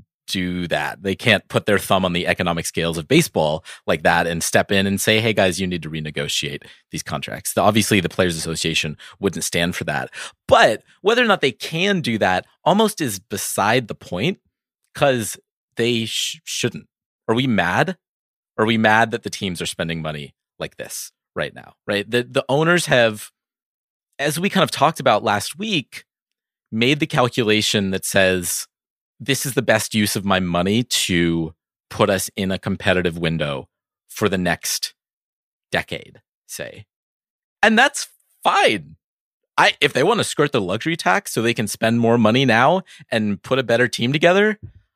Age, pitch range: 30-49, 90-120 Hz